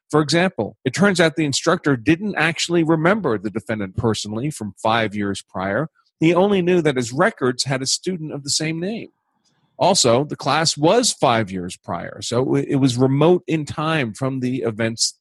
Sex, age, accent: male, 40-59, American